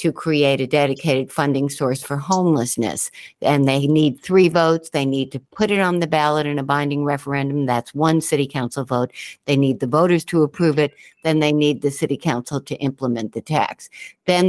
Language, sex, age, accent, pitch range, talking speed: English, female, 60-79, American, 135-155 Hz, 200 wpm